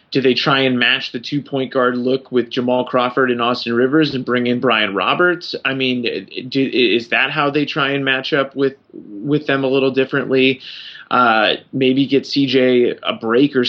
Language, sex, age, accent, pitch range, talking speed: English, male, 30-49, American, 125-140 Hz, 195 wpm